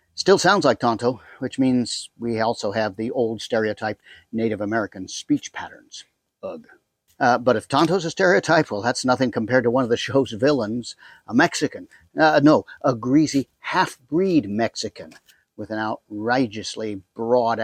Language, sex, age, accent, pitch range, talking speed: English, male, 50-69, American, 115-175 Hz, 155 wpm